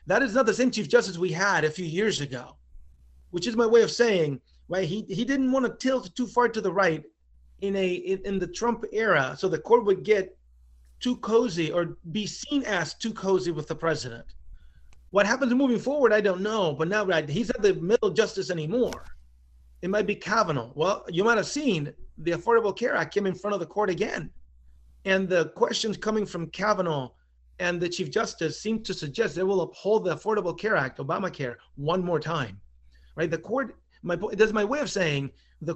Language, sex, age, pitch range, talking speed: English, male, 30-49, 145-220 Hz, 210 wpm